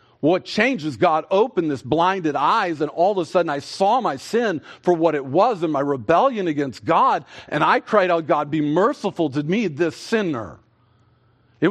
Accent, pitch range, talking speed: American, 130-180 Hz, 190 wpm